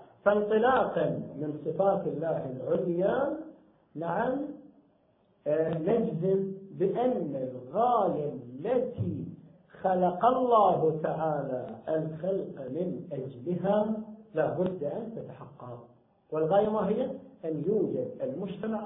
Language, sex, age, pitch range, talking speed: Arabic, male, 50-69, 160-215 Hz, 85 wpm